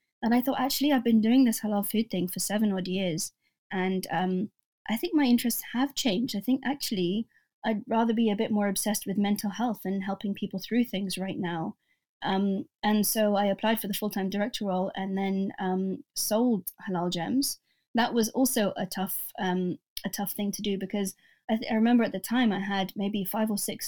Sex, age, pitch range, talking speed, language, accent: female, 20-39, 190-220 Hz, 205 wpm, English, British